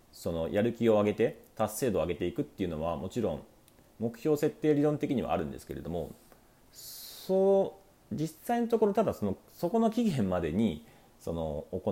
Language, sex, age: Japanese, male, 40-59